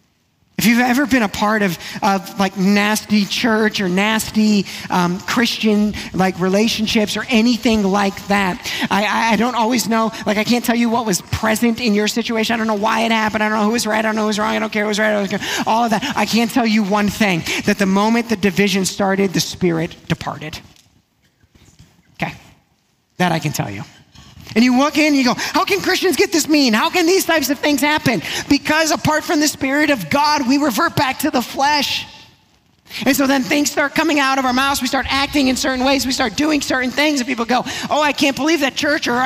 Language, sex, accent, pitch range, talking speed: English, male, American, 205-275 Hz, 230 wpm